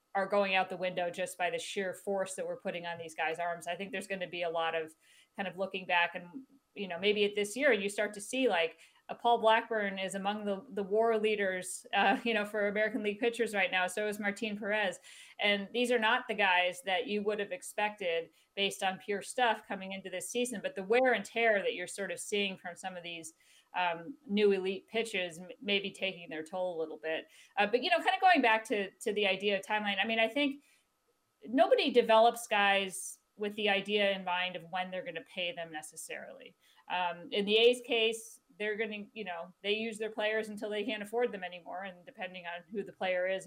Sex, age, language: female, 40-59, English